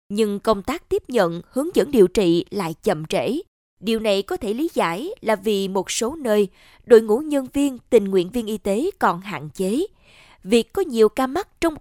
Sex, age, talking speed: female, 20-39, 210 wpm